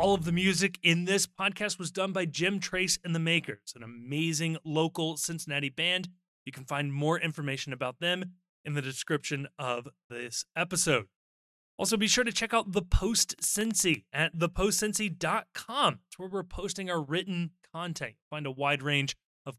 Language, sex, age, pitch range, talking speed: English, male, 20-39, 140-185 Hz, 170 wpm